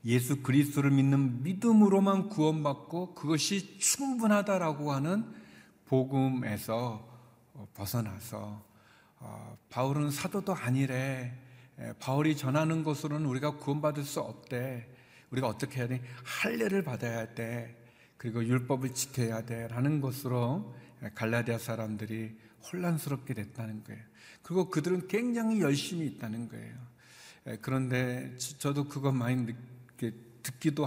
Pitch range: 120-155 Hz